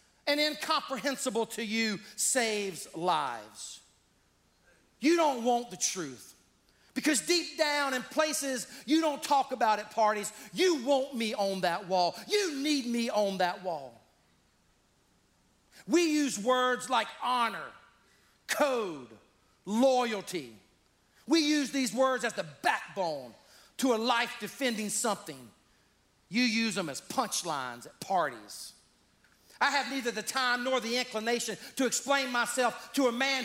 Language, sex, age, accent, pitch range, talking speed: English, male, 40-59, American, 210-275 Hz, 135 wpm